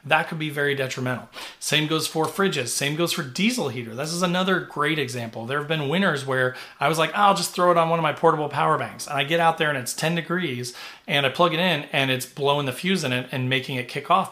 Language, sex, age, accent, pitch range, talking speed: English, male, 30-49, American, 130-165 Hz, 270 wpm